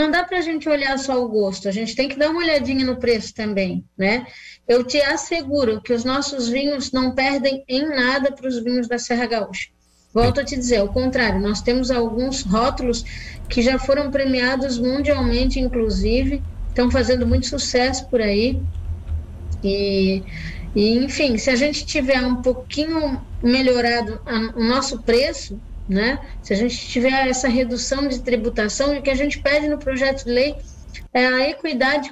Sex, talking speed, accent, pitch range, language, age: female, 175 wpm, Brazilian, 235-280 Hz, Portuguese, 10-29